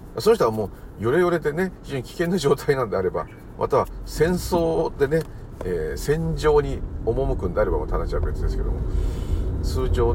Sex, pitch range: male, 75-90 Hz